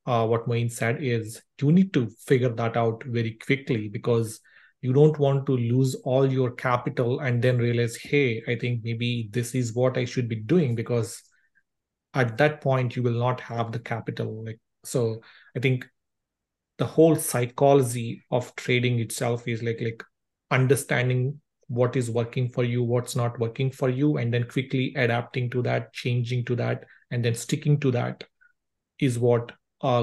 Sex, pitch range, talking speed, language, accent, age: male, 115-130 Hz, 175 wpm, English, Indian, 40-59